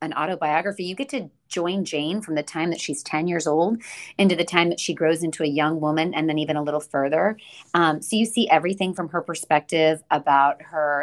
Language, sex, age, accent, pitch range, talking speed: English, female, 30-49, American, 155-180 Hz, 225 wpm